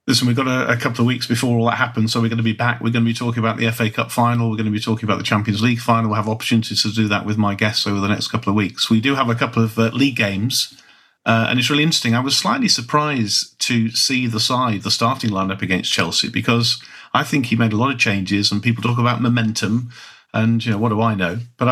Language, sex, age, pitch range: English, male, 50-69, 110-120 Hz